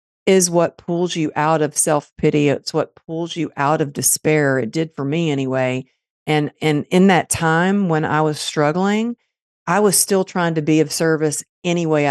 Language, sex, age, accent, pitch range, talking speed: English, female, 50-69, American, 150-190 Hz, 190 wpm